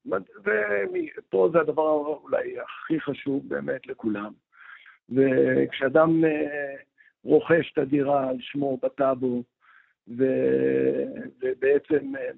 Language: Hebrew